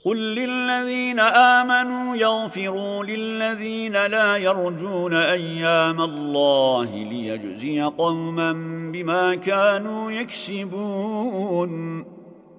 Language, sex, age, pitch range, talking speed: Turkish, male, 50-69, 165-200 Hz, 65 wpm